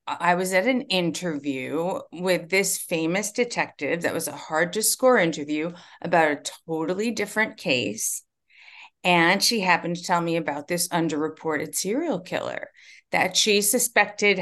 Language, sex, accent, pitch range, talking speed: English, female, American, 165-205 Hz, 145 wpm